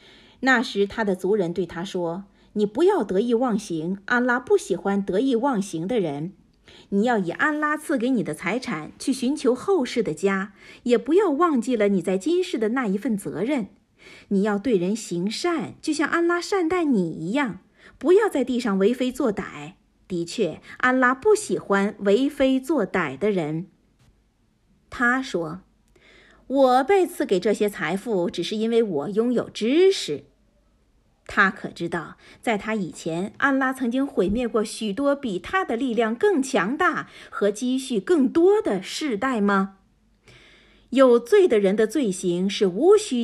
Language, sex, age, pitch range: Chinese, female, 50-69, 190-265 Hz